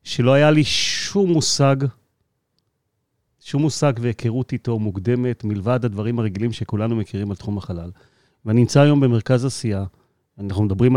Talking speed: 135 wpm